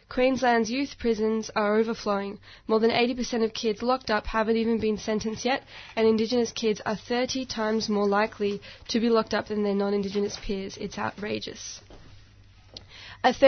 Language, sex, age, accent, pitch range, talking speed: English, female, 10-29, Australian, 200-235 Hz, 160 wpm